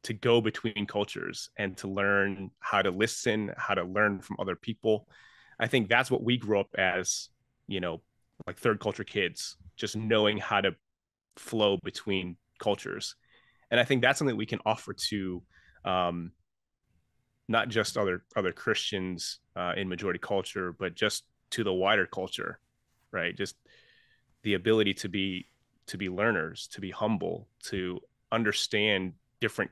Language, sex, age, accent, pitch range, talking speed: English, male, 30-49, American, 95-110 Hz, 160 wpm